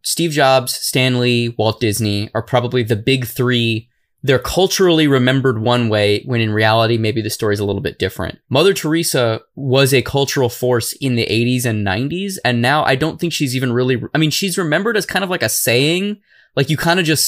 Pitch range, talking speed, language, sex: 115-150 Hz, 210 wpm, English, male